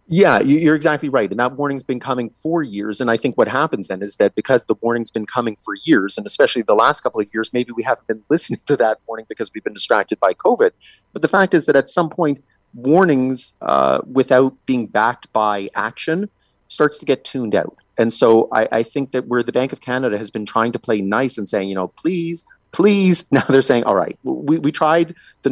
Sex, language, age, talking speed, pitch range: male, English, 30-49, 235 wpm, 120-160 Hz